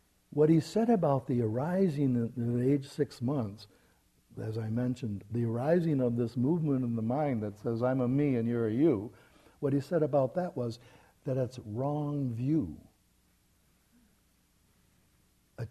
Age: 60-79